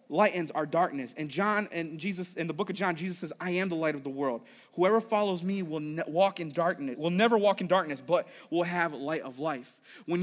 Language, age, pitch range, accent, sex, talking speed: English, 30-49, 185-260 Hz, American, male, 240 wpm